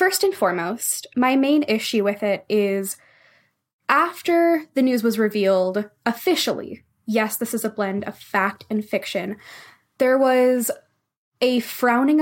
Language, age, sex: English, 10-29, female